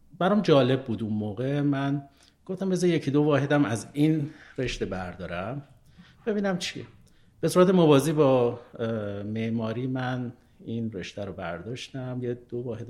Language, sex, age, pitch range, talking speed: Persian, male, 50-69, 110-140 Hz, 140 wpm